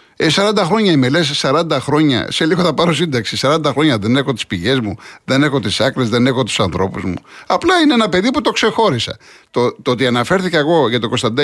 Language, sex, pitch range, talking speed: Greek, male, 120-155 Hz, 220 wpm